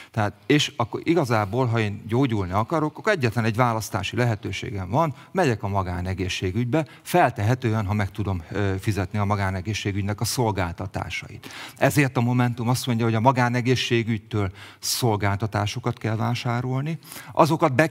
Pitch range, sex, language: 105-130 Hz, male, Hungarian